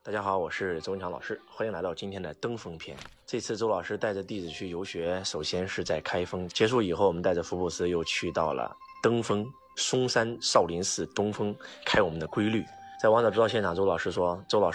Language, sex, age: Chinese, male, 20-39